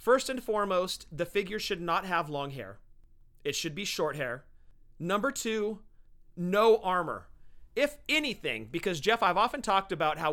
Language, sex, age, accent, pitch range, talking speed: English, male, 40-59, American, 150-210 Hz, 165 wpm